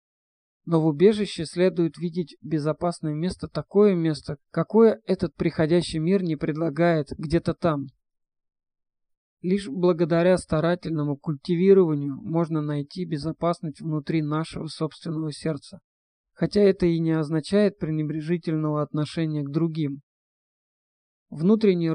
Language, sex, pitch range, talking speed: Russian, male, 155-175 Hz, 105 wpm